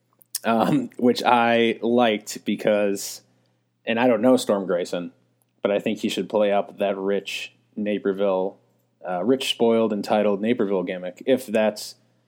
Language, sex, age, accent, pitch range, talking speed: English, male, 20-39, American, 95-120 Hz, 140 wpm